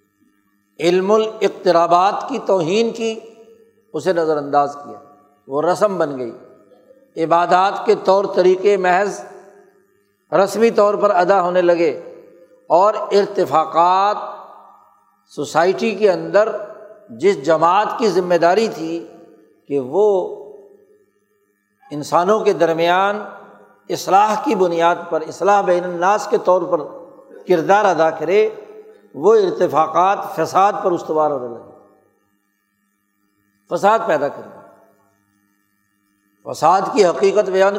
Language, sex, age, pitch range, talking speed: Urdu, male, 60-79, 145-210 Hz, 105 wpm